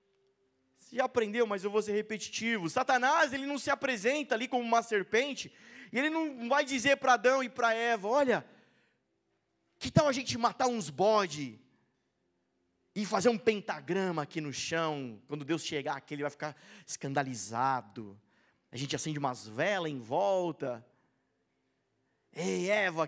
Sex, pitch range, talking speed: male, 145-245 Hz, 150 wpm